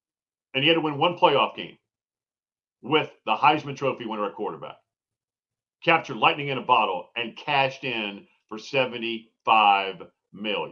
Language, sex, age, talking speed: English, male, 50-69, 145 wpm